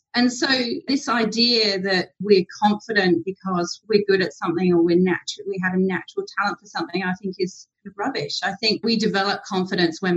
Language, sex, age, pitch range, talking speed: English, female, 40-59, 170-220 Hz, 185 wpm